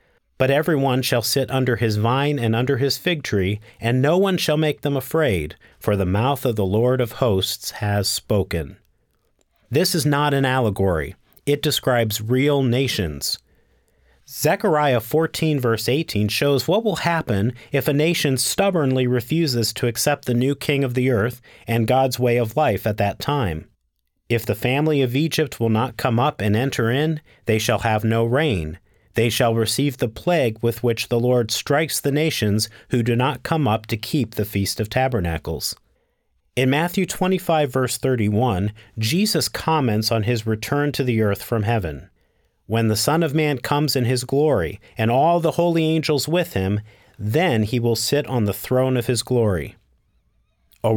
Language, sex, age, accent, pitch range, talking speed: English, male, 40-59, American, 110-145 Hz, 175 wpm